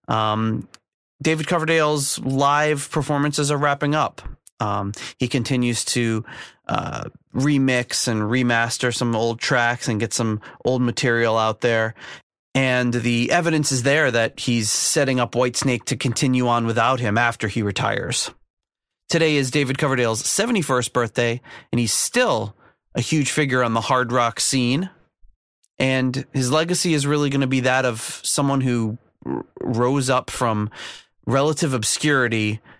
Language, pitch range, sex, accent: English, 115-135 Hz, male, American